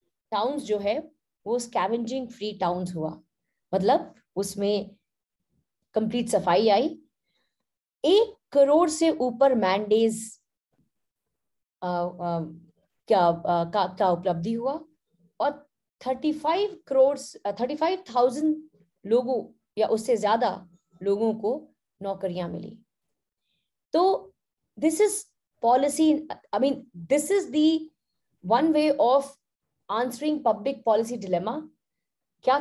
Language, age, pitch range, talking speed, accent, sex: Hindi, 20-39, 215-310 Hz, 90 wpm, native, female